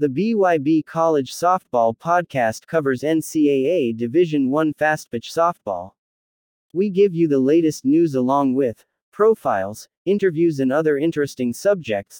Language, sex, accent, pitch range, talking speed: English, male, American, 130-175 Hz, 125 wpm